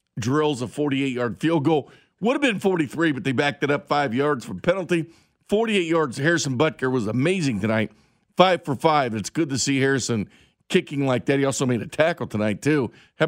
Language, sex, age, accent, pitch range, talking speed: English, male, 50-69, American, 125-170 Hz, 200 wpm